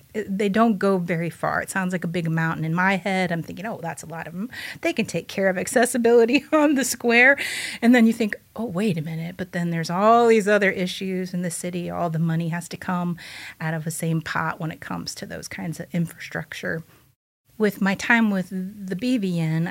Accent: American